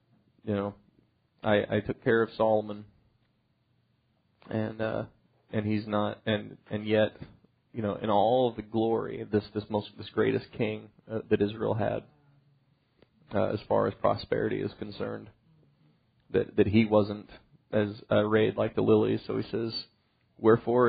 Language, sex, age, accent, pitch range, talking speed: English, male, 30-49, American, 105-125 Hz, 155 wpm